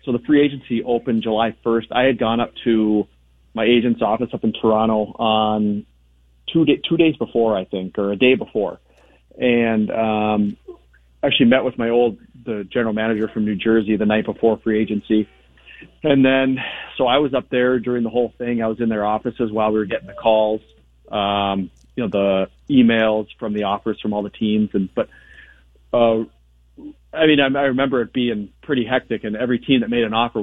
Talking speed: 200 wpm